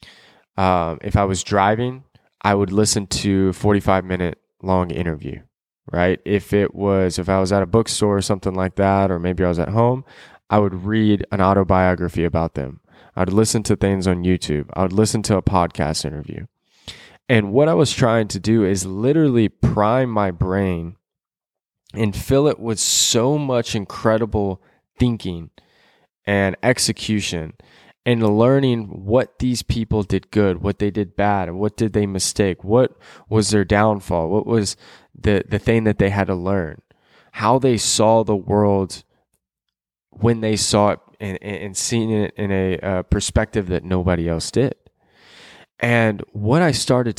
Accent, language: American, English